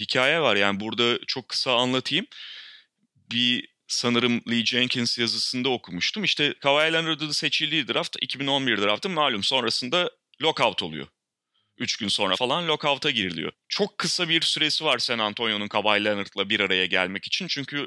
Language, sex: Turkish, male